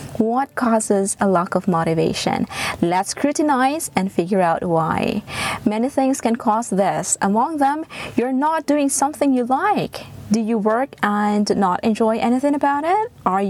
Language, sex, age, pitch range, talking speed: English, female, 20-39, 195-270 Hz, 155 wpm